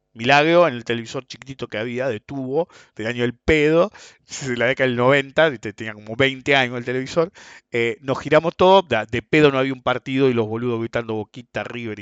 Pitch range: 120-155 Hz